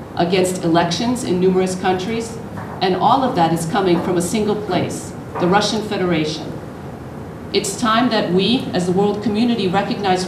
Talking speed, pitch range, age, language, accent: 160 wpm, 160-195 Hz, 50-69, Ukrainian, American